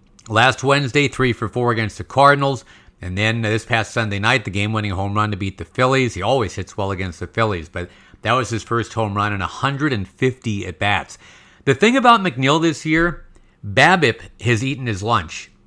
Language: English